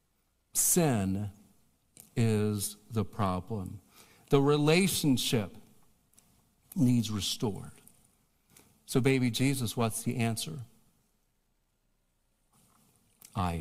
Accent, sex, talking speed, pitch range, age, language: American, male, 65 wpm, 100-135 Hz, 50-69, English